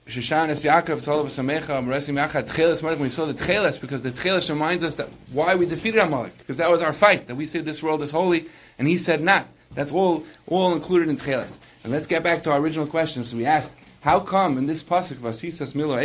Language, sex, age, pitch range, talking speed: English, male, 30-49, 130-165 Hz, 215 wpm